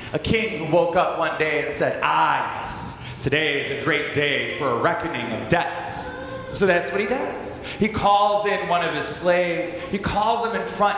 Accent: American